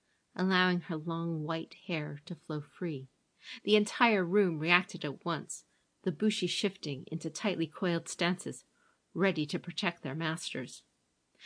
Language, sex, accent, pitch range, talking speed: English, female, American, 160-195 Hz, 135 wpm